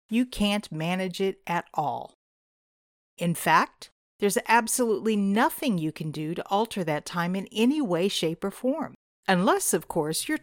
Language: English